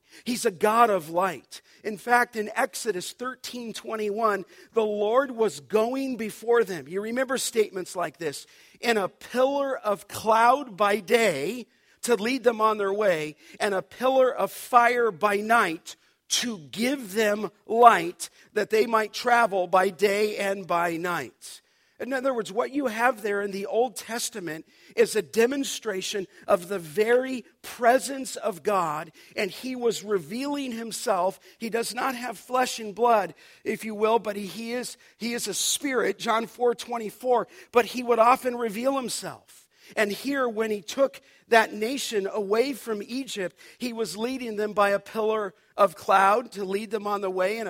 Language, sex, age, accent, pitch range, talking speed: English, male, 50-69, American, 200-245 Hz, 165 wpm